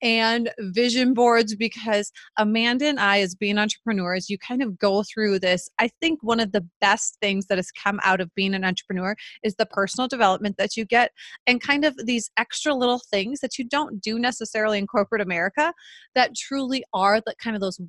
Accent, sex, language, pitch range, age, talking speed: American, female, English, 200-245 Hz, 30-49, 200 wpm